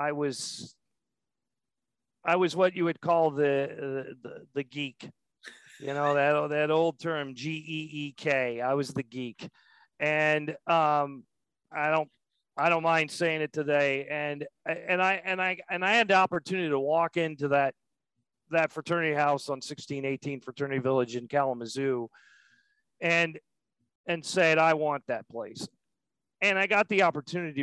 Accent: American